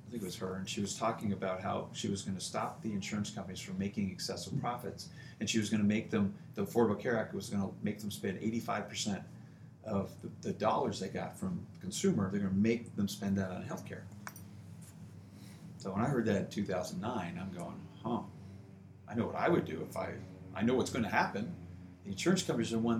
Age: 40-59